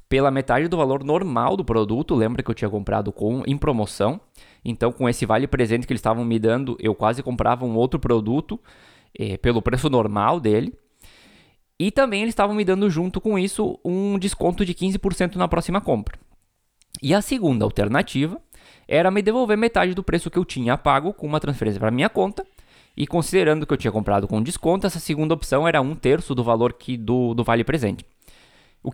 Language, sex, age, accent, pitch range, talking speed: Portuguese, male, 20-39, Brazilian, 110-160 Hz, 195 wpm